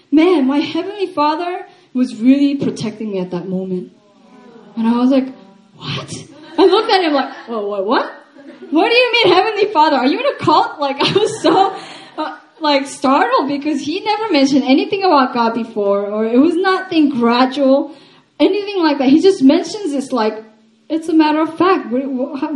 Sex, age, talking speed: female, 10-29, 190 wpm